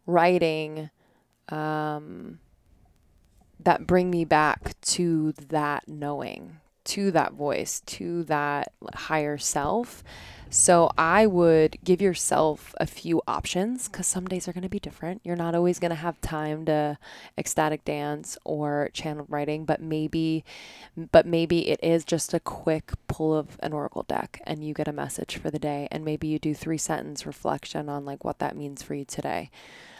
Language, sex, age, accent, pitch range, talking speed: English, female, 20-39, American, 150-180 Hz, 160 wpm